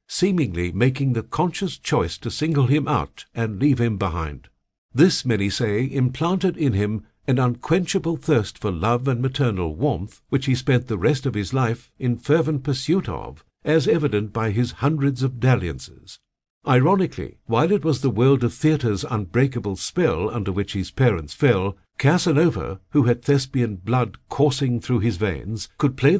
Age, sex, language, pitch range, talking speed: 60-79, male, English, 105-145 Hz, 165 wpm